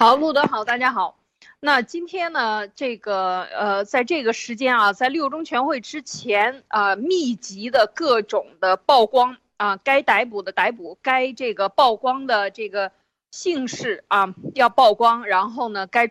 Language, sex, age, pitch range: Chinese, female, 20-39, 200-270 Hz